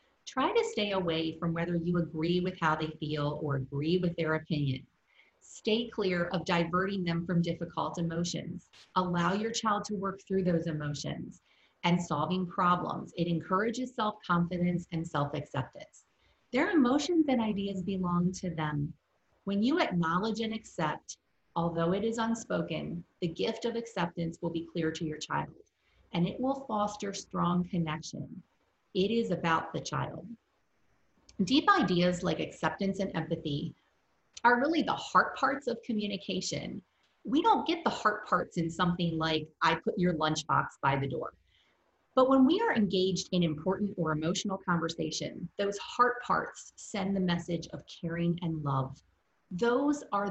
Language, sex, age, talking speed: English, female, 30-49, 155 wpm